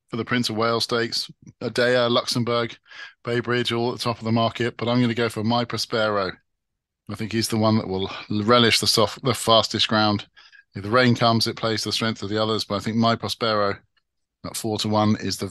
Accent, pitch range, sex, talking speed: British, 110-120 Hz, male, 235 wpm